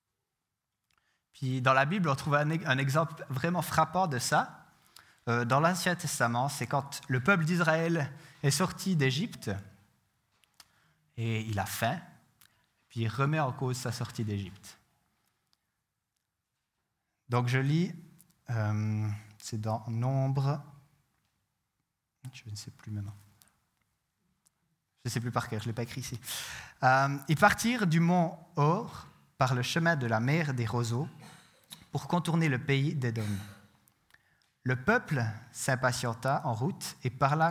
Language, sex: French, male